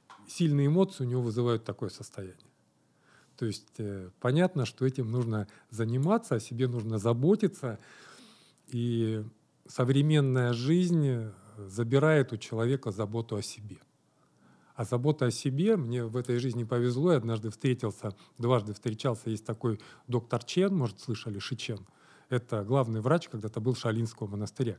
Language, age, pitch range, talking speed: Russian, 40-59, 110-140 Hz, 140 wpm